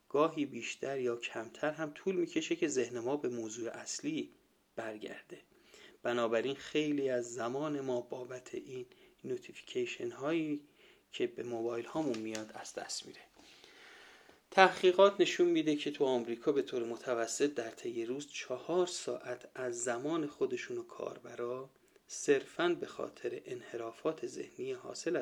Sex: male